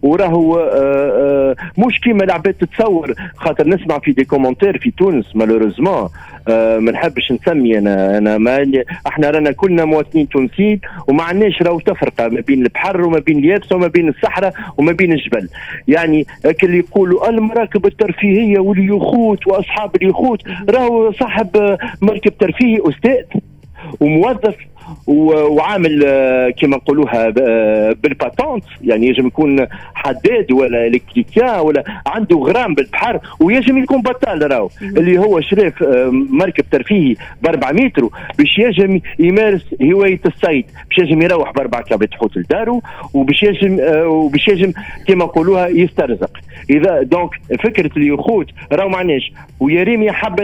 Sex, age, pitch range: male, 50-69, 145-205 Hz